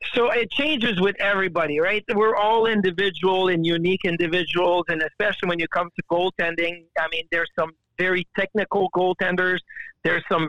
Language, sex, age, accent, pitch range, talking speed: English, male, 50-69, American, 180-230 Hz, 160 wpm